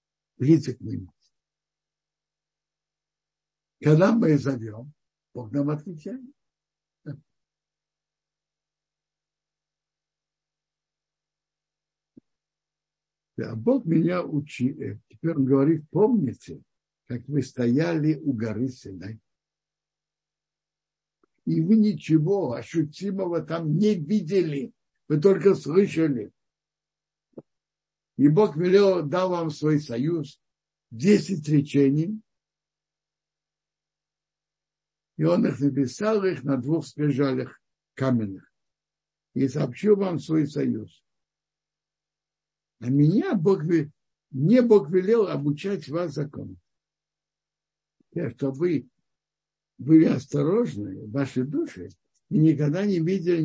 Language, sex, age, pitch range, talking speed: Russian, male, 60-79, 140-185 Hz, 80 wpm